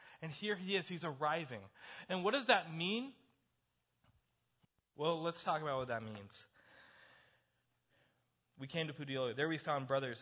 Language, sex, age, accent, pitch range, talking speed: English, male, 20-39, American, 120-165 Hz, 155 wpm